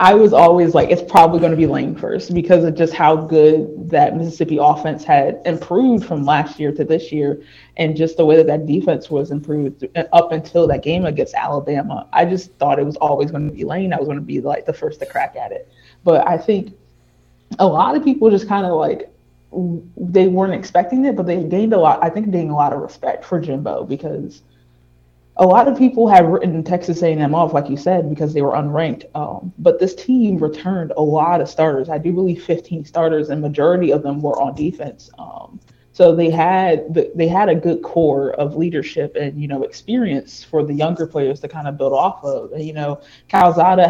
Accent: American